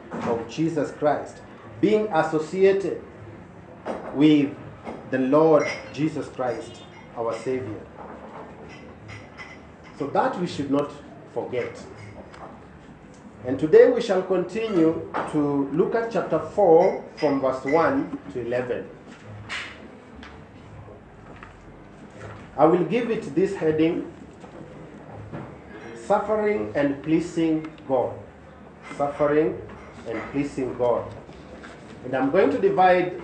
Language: English